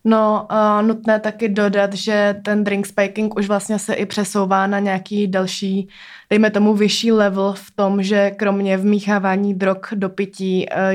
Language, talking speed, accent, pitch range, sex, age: Czech, 165 wpm, native, 180-200 Hz, female, 20-39